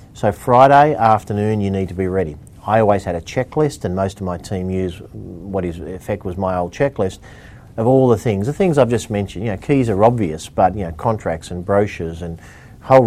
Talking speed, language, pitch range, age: 220 wpm, English, 95-115 Hz, 40-59